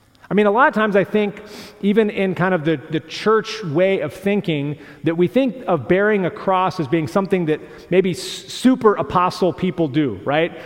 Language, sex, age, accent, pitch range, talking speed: English, male, 40-59, American, 140-190 Hz, 190 wpm